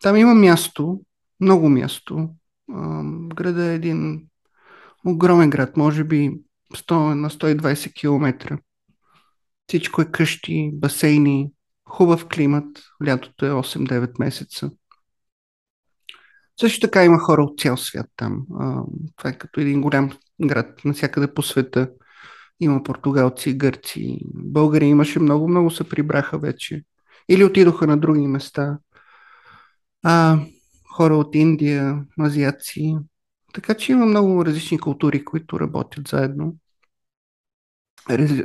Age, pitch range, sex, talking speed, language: 50-69, 145-170 Hz, male, 115 wpm, Bulgarian